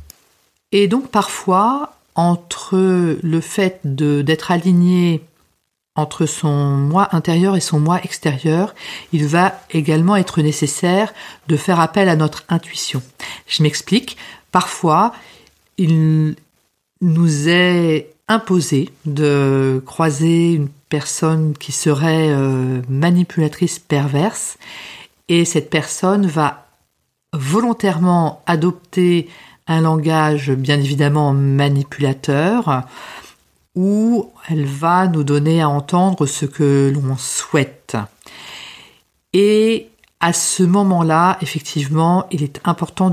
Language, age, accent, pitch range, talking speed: French, 50-69, French, 145-185 Hz, 100 wpm